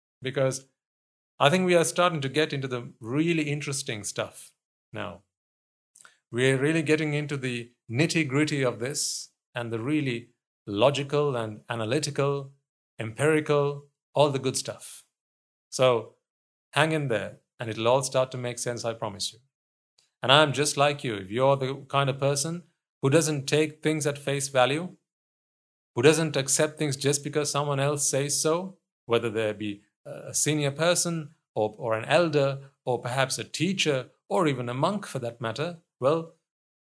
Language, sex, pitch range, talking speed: English, male, 115-145 Hz, 165 wpm